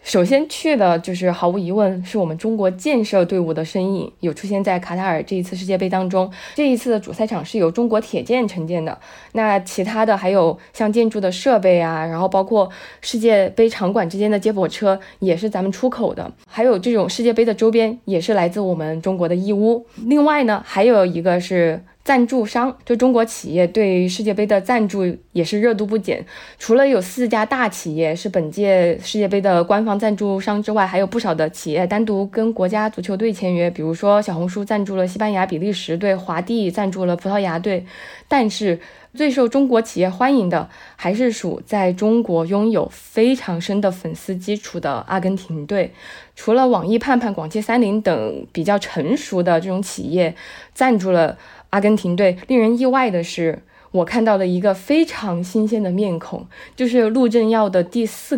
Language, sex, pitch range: Chinese, female, 180-225 Hz